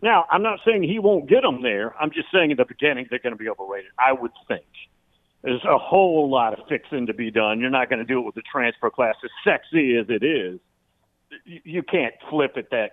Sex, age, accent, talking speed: male, 60-79, American, 240 wpm